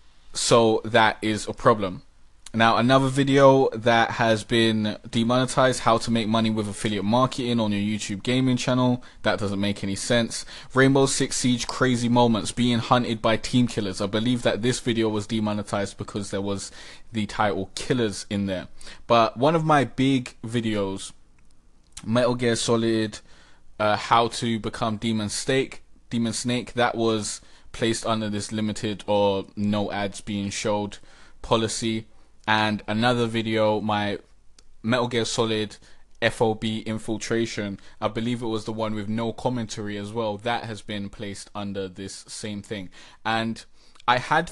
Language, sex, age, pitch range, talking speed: English, male, 20-39, 105-120 Hz, 155 wpm